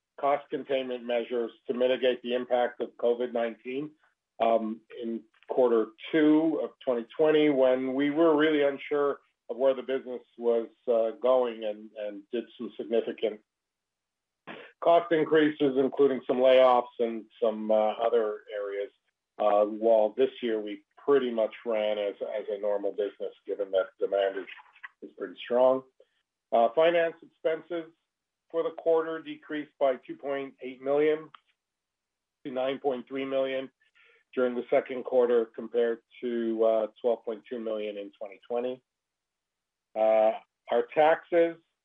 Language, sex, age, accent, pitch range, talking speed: English, male, 50-69, American, 115-150 Hz, 125 wpm